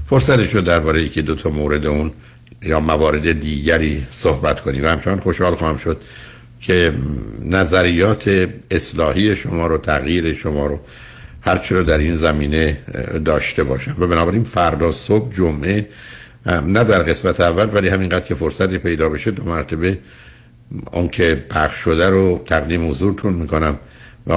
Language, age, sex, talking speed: Persian, 60-79, male, 145 wpm